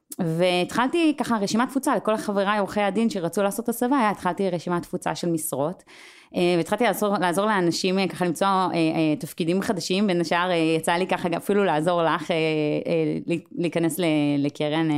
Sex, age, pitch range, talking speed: female, 30-49, 160-225 Hz, 135 wpm